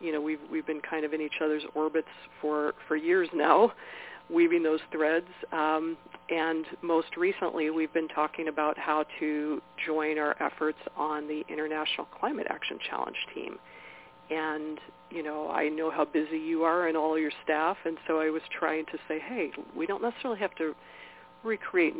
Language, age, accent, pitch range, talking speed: English, 50-69, American, 150-175 Hz, 175 wpm